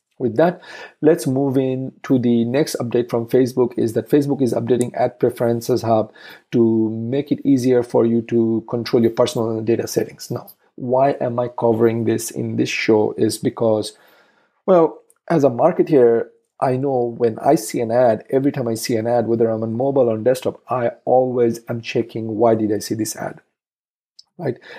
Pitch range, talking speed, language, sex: 110-130 Hz, 185 wpm, English, male